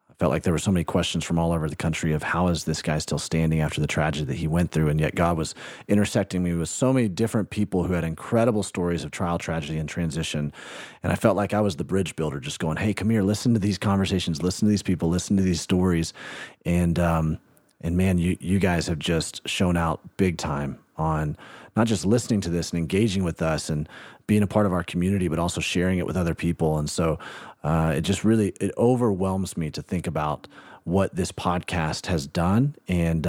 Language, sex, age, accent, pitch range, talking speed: English, male, 30-49, American, 80-105 Hz, 230 wpm